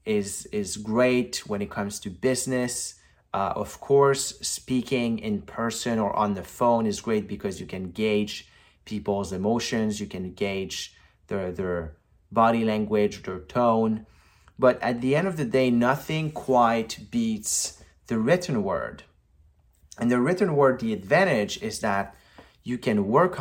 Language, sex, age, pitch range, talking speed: English, male, 30-49, 95-130 Hz, 150 wpm